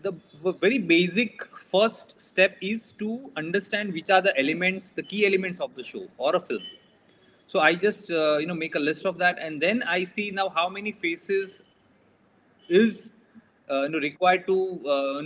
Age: 30-49